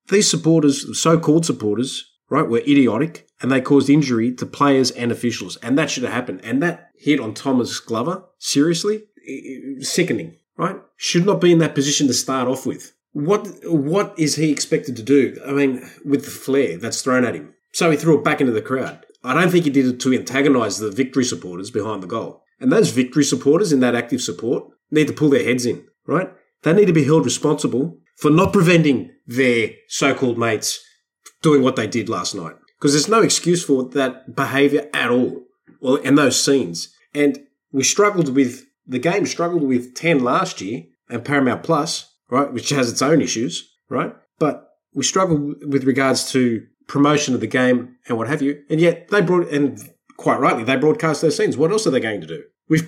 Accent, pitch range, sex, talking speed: Australian, 130-160 Hz, male, 200 wpm